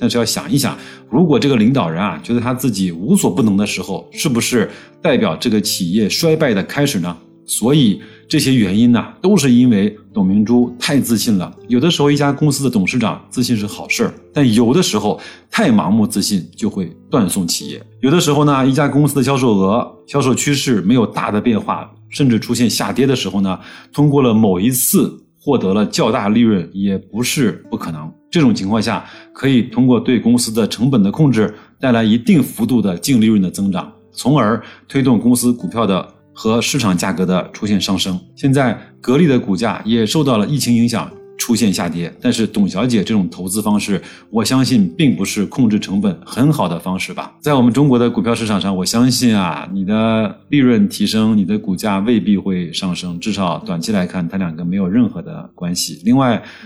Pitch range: 100-150 Hz